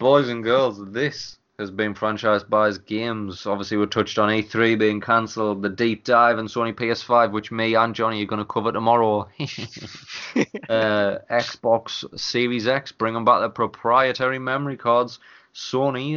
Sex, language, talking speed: male, English, 160 wpm